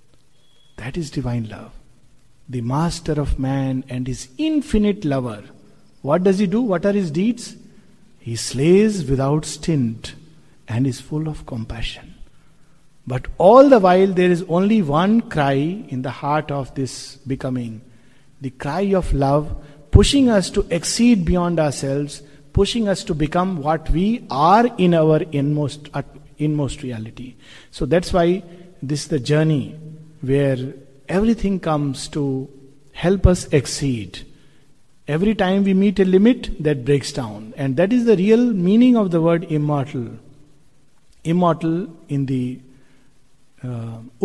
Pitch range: 135-195 Hz